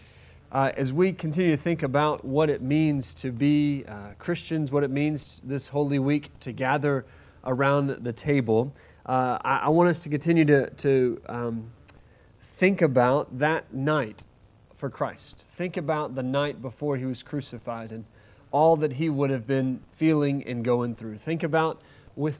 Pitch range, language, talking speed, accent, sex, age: 120-150 Hz, English, 170 wpm, American, male, 30-49